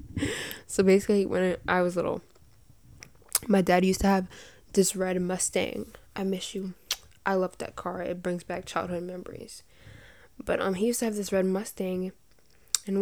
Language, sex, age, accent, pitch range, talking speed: English, female, 10-29, American, 180-200 Hz, 165 wpm